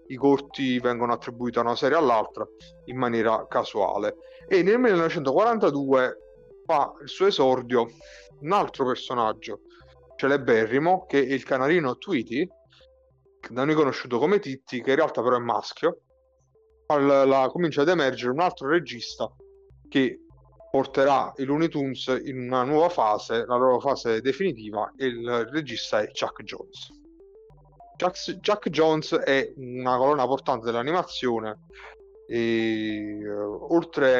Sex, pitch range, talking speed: male, 120-165 Hz, 130 wpm